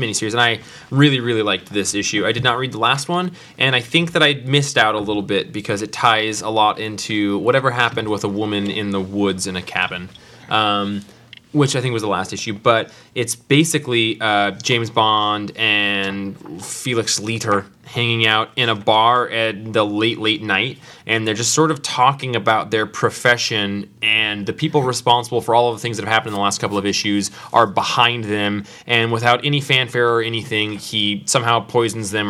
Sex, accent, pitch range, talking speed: male, American, 105-130 Hz, 205 wpm